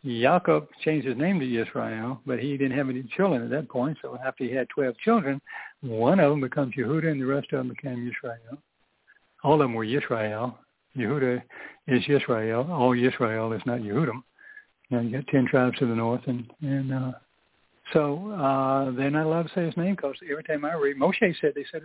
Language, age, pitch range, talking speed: English, 60-79, 125-160 Hz, 205 wpm